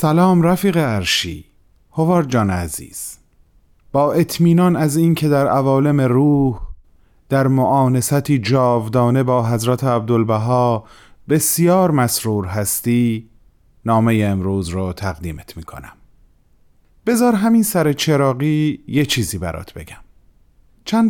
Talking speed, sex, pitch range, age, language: 105 wpm, male, 105-150 Hz, 30-49, Persian